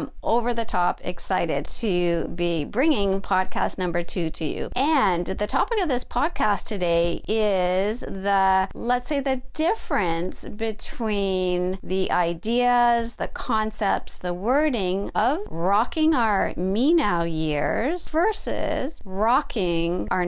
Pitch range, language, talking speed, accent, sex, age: 185-245 Hz, English, 115 wpm, American, female, 40-59